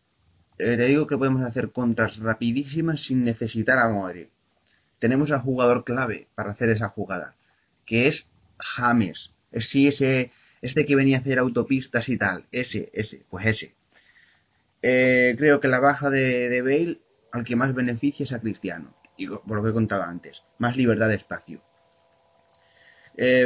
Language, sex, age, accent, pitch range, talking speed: Spanish, male, 20-39, Spanish, 110-130 Hz, 160 wpm